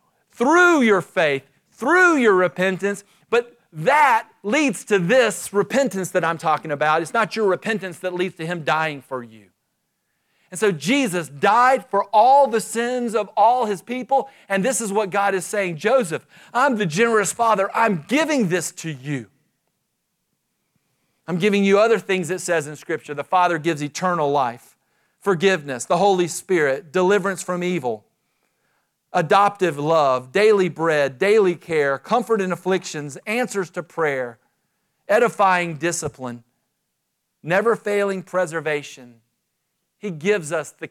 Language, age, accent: English, 40-59, American